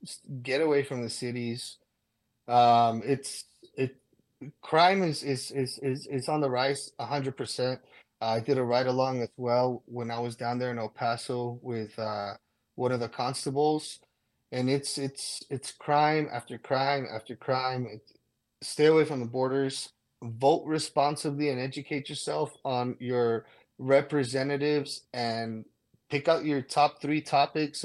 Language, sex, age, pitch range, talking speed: English, male, 20-39, 120-140 Hz, 155 wpm